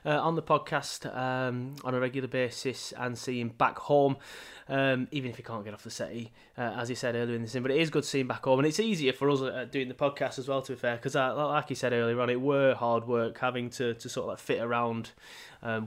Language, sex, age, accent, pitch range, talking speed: English, male, 20-39, British, 120-145 Hz, 260 wpm